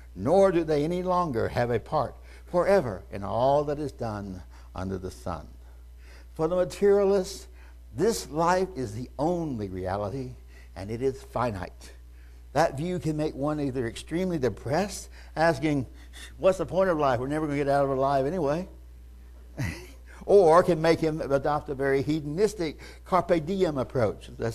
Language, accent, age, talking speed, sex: English, American, 60-79, 160 wpm, male